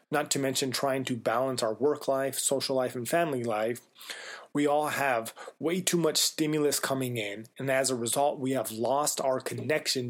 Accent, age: American, 30-49